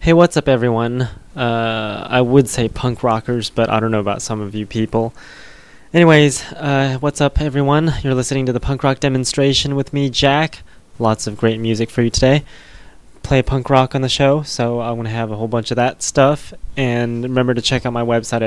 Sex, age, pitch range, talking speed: male, 20-39, 115-140 Hz, 210 wpm